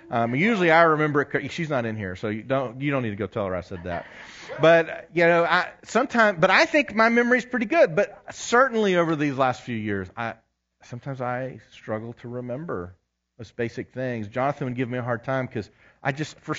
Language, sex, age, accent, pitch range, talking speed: English, male, 40-59, American, 105-160 Hz, 220 wpm